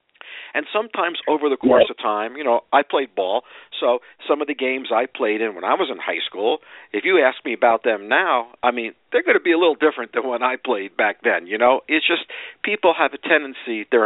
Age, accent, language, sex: 50-69, American, English, male